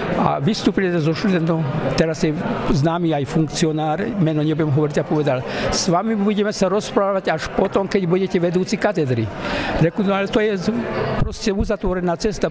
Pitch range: 155-190 Hz